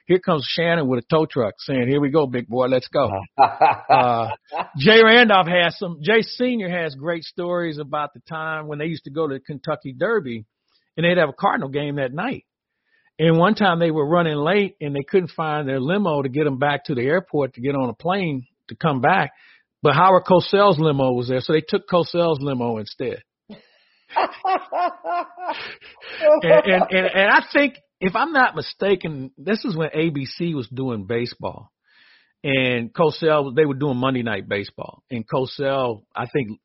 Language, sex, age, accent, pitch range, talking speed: English, male, 50-69, American, 125-180 Hz, 185 wpm